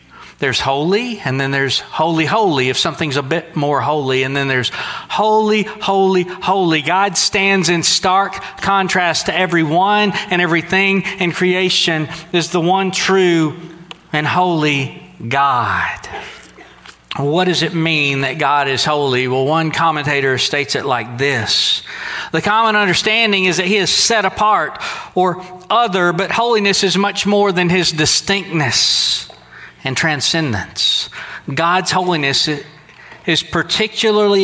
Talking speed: 135 wpm